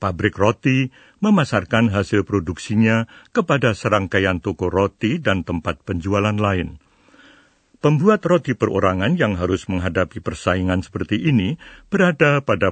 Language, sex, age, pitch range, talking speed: Indonesian, male, 60-79, 95-130 Hz, 115 wpm